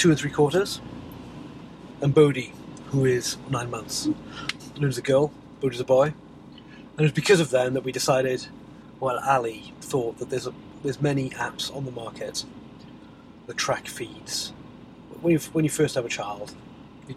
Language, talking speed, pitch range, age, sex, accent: English, 170 wpm, 130-150 Hz, 30-49, male, British